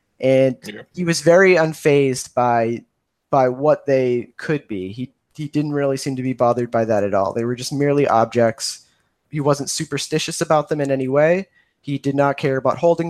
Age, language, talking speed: 20-39, English, 190 wpm